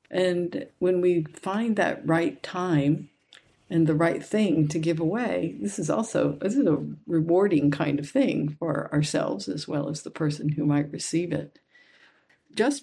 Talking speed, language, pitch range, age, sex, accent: 170 wpm, English, 150-175 Hz, 50-69, female, American